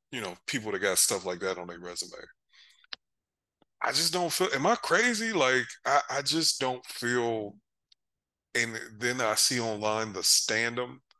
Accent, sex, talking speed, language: American, male, 165 wpm, English